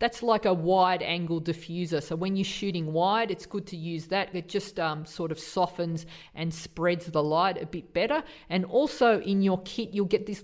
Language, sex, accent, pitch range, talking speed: English, female, Australian, 160-200 Hz, 215 wpm